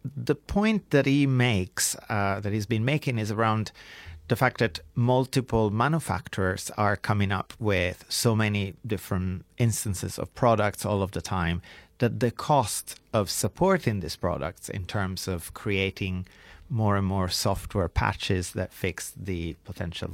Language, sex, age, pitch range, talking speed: English, male, 30-49, 95-115 Hz, 150 wpm